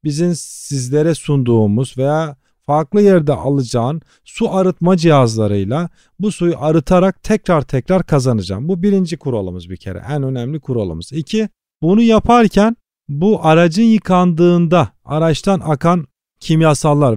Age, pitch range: 40-59, 135-185 Hz